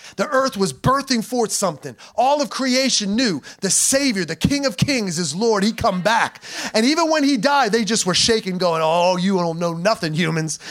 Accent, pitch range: American, 195-250 Hz